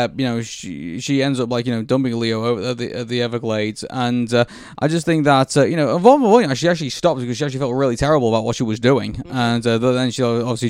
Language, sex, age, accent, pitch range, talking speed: English, male, 20-39, British, 110-130 Hz, 235 wpm